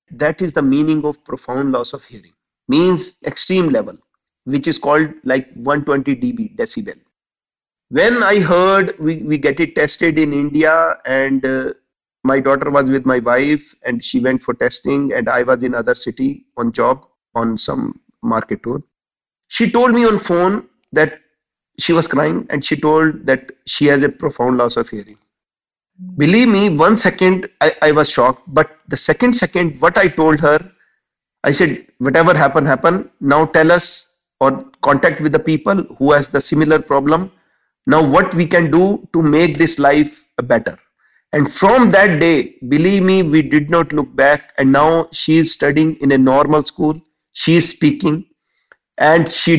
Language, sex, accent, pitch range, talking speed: English, male, Indian, 145-180 Hz, 175 wpm